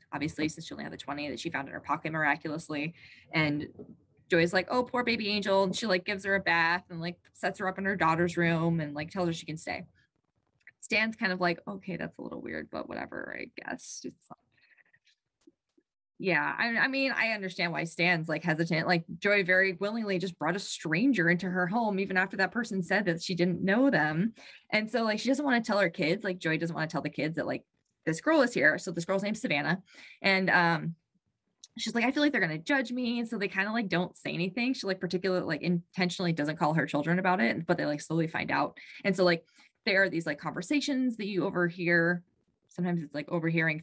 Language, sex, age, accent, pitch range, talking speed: English, female, 20-39, American, 165-205 Hz, 235 wpm